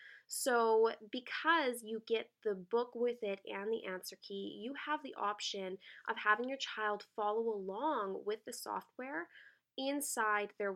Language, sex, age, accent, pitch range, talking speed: English, female, 20-39, American, 200-250 Hz, 150 wpm